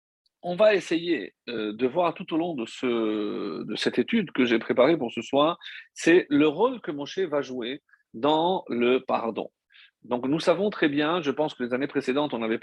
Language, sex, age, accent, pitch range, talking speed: French, male, 50-69, French, 120-170 Hz, 200 wpm